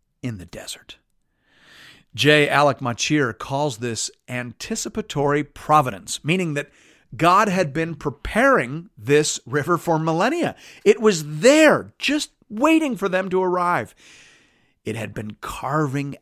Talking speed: 120 wpm